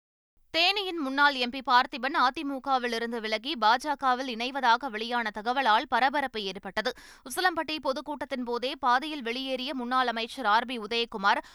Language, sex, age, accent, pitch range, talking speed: Tamil, female, 20-39, native, 230-280 Hz, 105 wpm